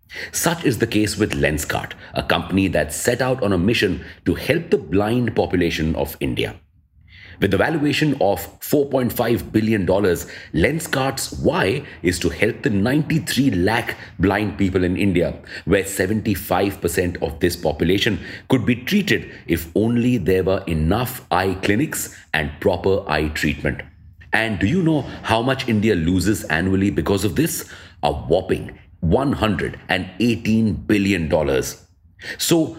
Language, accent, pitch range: English, Indian, 90-120 Hz